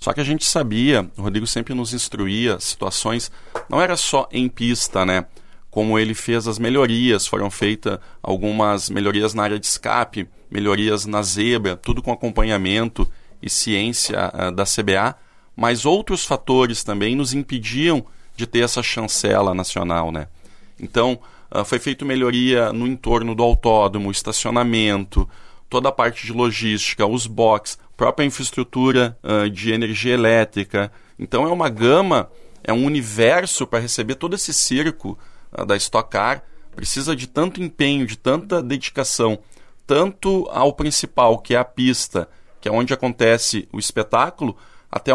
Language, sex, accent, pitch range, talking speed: Portuguese, male, Brazilian, 105-135 Hz, 150 wpm